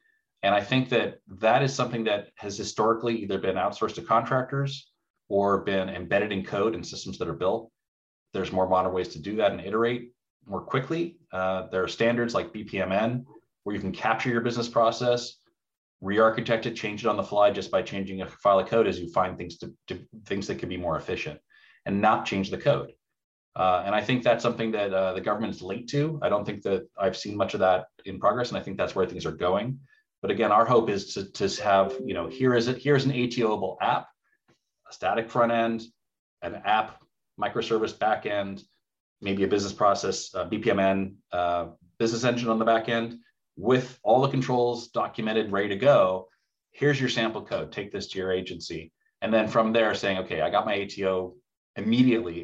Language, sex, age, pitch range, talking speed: English, male, 30-49, 95-120 Hz, 205 wpm